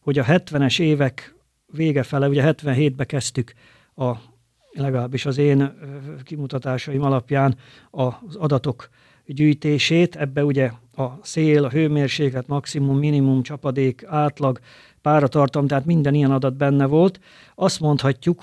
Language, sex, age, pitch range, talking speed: Hungarian, male, 50-69, 135-160 Hz, 115 wpm